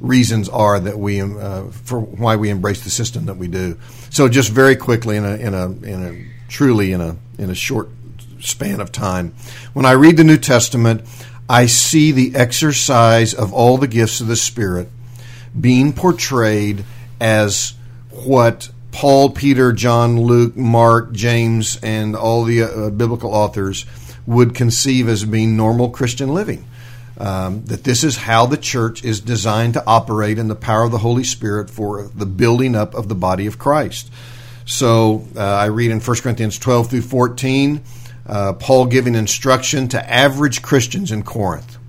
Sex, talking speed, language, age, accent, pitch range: male, 165 wpm, English, 50-69, American, 110-125 Hz